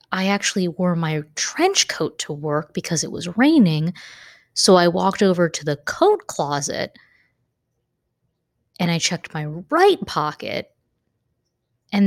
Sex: female